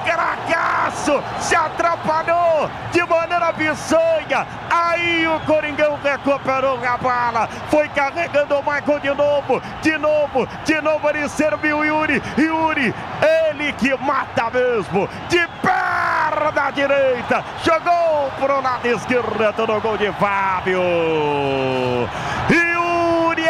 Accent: Brazilian